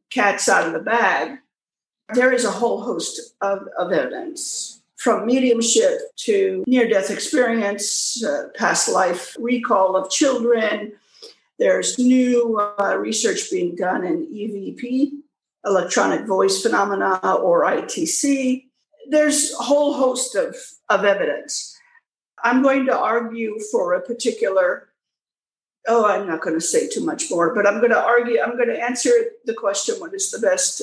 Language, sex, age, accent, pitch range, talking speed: English, female, 50-69, American, 210-305 Hz, 145 wpm